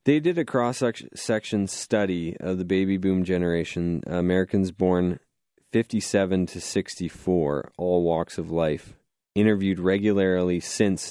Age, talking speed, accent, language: 20-39, 120 wpm, American, English